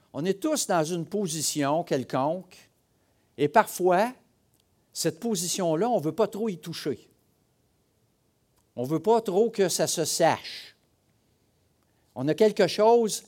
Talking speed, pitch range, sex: 140 wpm, 115-175 Hz, male